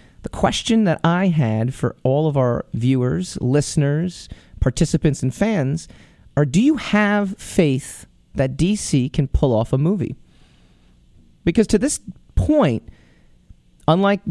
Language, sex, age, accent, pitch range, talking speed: English, male, 30-49, American, 130-165 Hz, 130 wpm